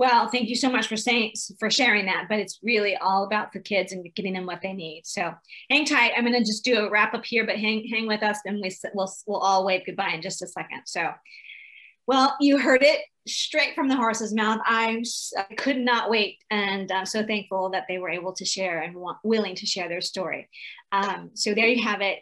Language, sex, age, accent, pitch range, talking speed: English, female, 30-49, American, 195-235 Hz, 235 wpm